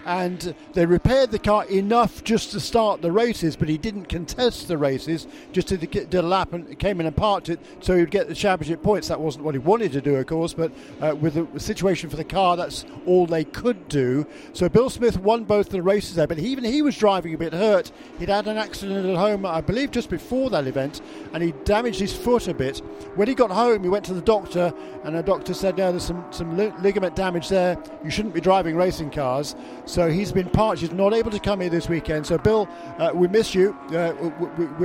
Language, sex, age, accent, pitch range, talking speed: English, male, 50-69, British, 165-205 Hz, 235 wpm